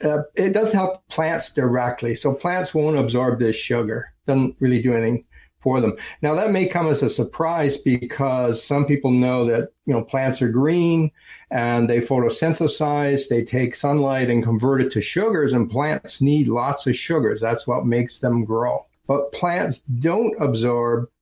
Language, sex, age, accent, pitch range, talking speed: English, male, 60-79, American, 120-150 Hz, 175 wpm